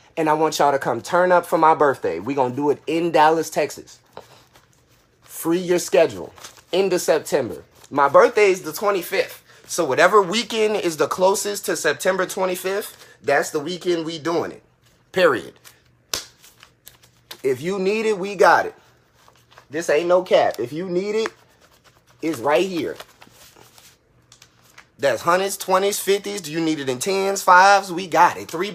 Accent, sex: American, male